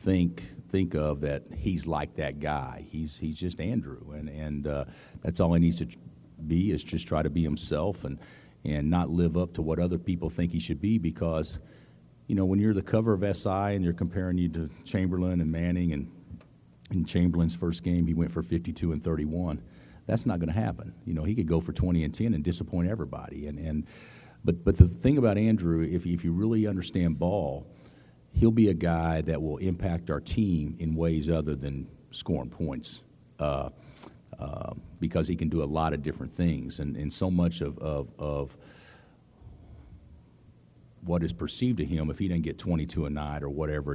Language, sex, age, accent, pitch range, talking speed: English, male, 40-59, American, 75-90 Hz, 200 wpm